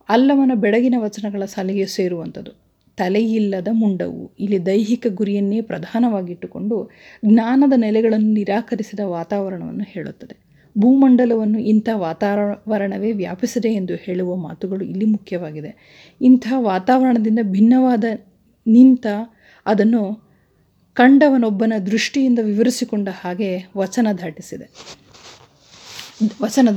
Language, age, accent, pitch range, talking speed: Kannada, 30-49, native, 195-235 Hz, 85 wpm